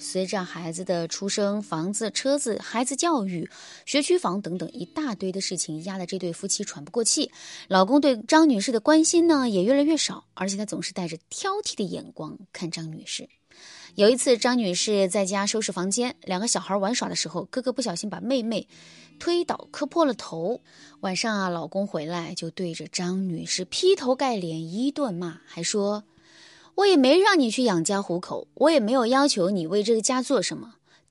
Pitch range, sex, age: 175-270 Hz, female, 20-39